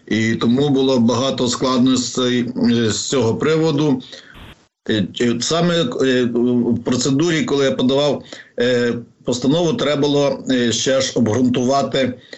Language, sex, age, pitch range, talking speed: Ukrainian, male, 50-69, 120-135 Hz, 95 wpm